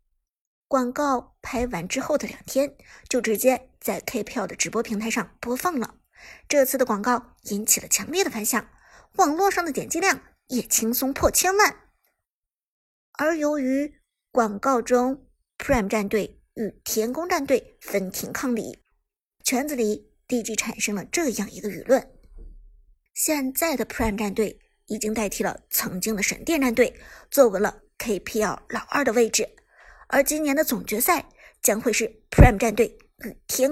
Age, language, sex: 50-69, Chinese, male